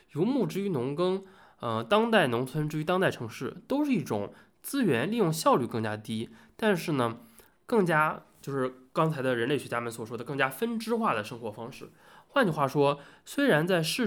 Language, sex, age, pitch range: Chinese, male, 20-39, 115-165 Hz